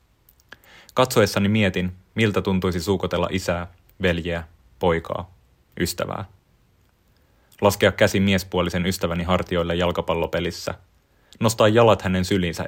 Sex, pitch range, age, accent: male, 85-100 Hz, 30-49, native